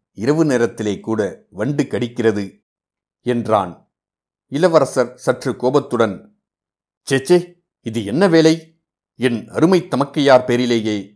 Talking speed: 90 wpm